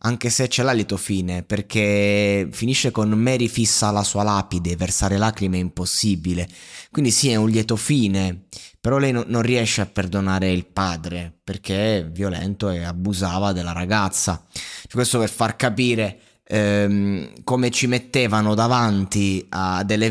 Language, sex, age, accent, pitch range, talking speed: Italian, male, 20-39, native, 100-120 Hz, 150 wpm